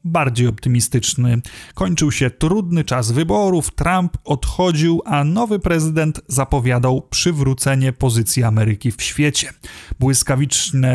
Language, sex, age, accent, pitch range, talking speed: Polish, male, 30-49, native, 120-150 Hz, 105 wpm